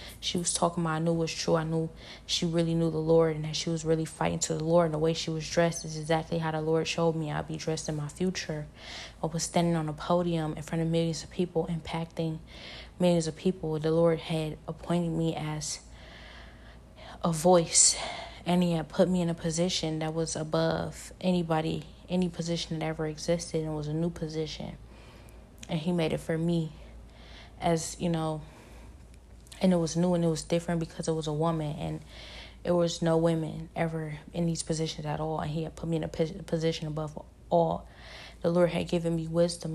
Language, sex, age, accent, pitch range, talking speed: English, female, 10-29, American, 160-170 Hz, 210 wpm